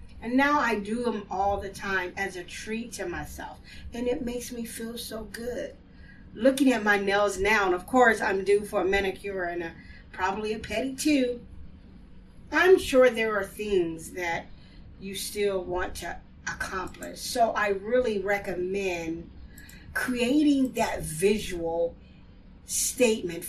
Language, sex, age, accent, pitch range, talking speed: English, female, 40-59, American, 175-225 Hz, 150 wpm